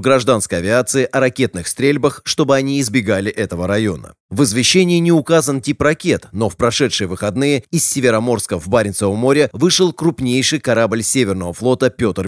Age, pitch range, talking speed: 30-49, 105-140 Hz, 150 wpm